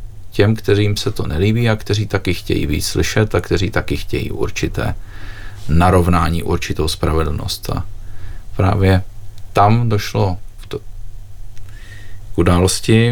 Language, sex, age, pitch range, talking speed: Czech, male, 40-59, 95-105 Hz, 115 wpm